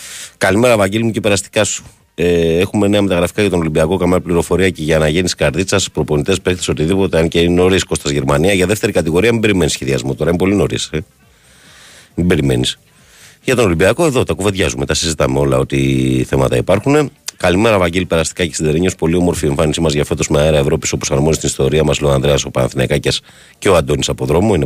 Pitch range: 75-95 Hz